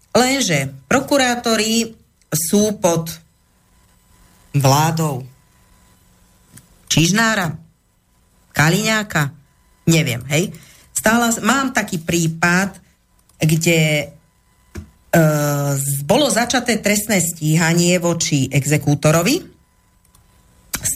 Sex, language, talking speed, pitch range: female, Slovak, 55 wpm, 150-200 Hz